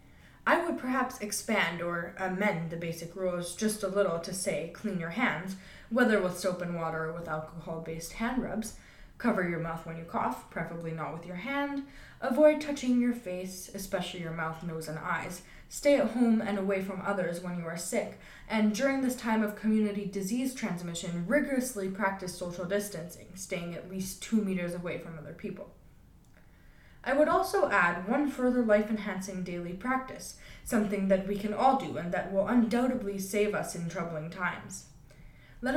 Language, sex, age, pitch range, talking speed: English, female, 20-39, 175-230 Hz, 180 wpm